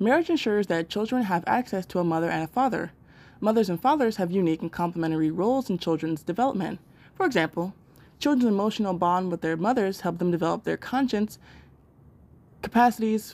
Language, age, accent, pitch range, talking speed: English, 20-39, American, 170-215 Hz, 165 wpm